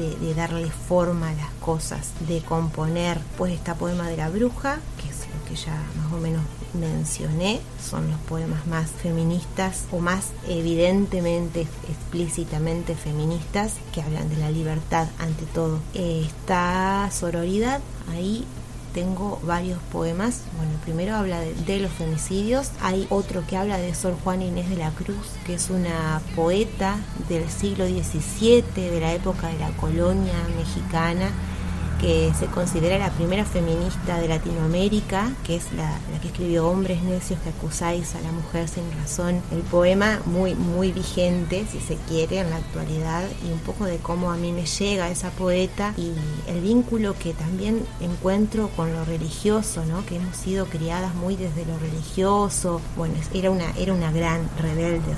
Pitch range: 160-180 Hz